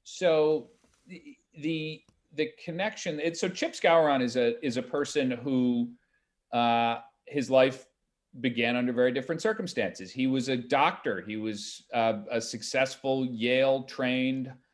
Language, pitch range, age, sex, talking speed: English, 125-185 Hz, 40-59, male, 135 wpm